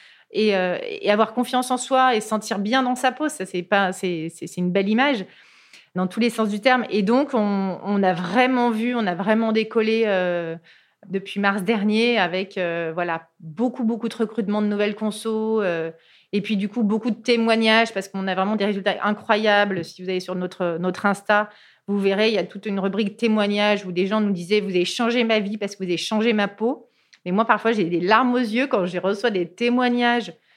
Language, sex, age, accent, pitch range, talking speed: French, female, 30-49, French, 195-235 Hz, 230 wpm